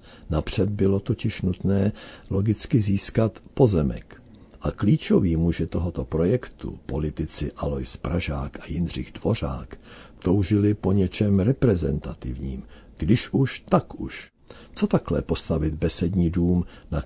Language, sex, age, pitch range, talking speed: Czech, male, 60-79, 80-100 Hz, 115 wpm